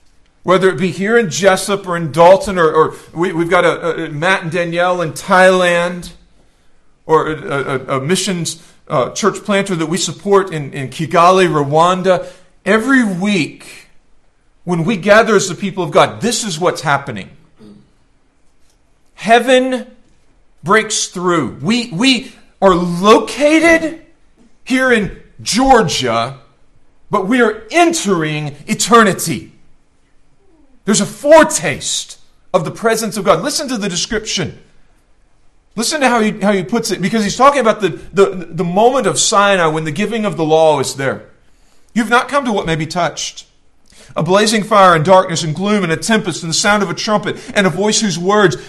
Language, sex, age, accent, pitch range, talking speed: English, male, 40-59, American, 160-215 Hz, 160 wpm